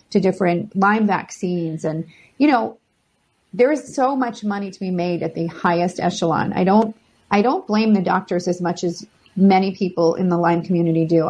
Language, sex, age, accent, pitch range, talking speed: English, female, 40-59, American, 180-225 Hz, 190 wpm